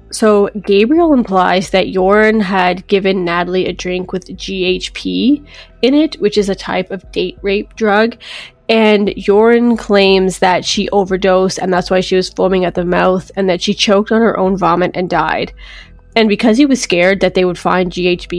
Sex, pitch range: female, 185-215 Hz